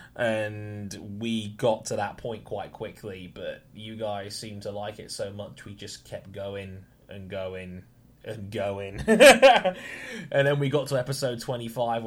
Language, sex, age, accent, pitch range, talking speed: English, male, 10-29, British, 110-140 Hz, 160 wpm